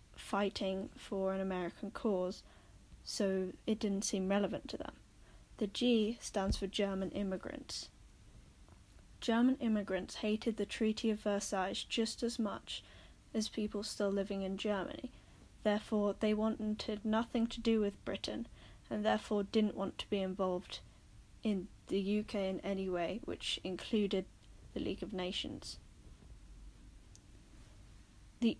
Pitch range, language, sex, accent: 190-220 Hz, English, female, British